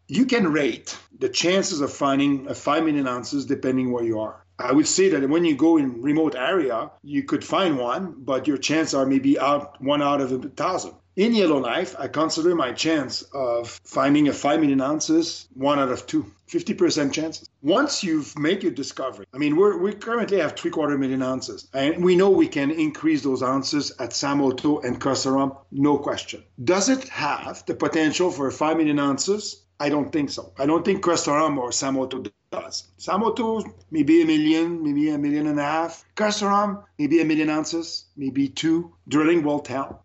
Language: English